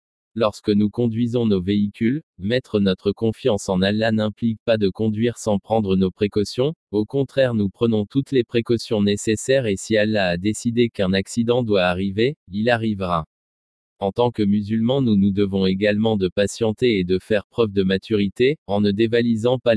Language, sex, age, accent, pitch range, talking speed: French, male, 20-39, French, 100-120 Hz, 175 wpm